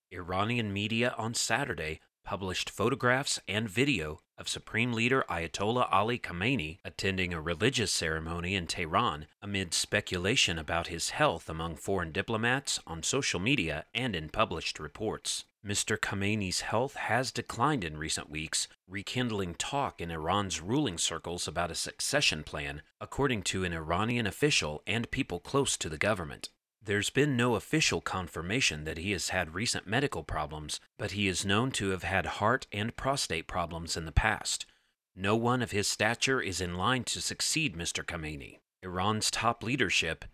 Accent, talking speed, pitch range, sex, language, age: American, 155 wpm, 85-115 Hz, male, English, 30-49